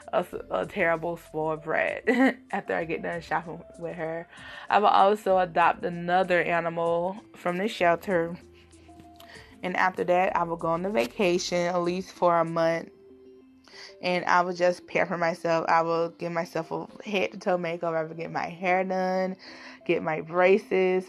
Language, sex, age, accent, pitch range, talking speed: English, female, 20-39, American, 165-195 Hz, 170 wpm